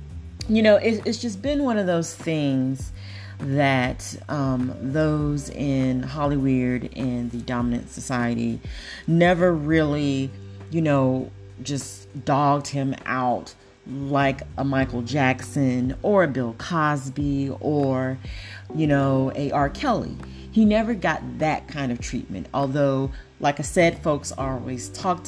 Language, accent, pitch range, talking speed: English, American, 125-150 Hz, 135 wpm